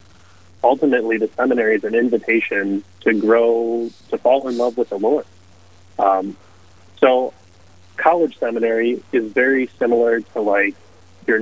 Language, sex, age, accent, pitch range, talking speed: English, male, 30-49, American, 95-115 Hz, 130 wpm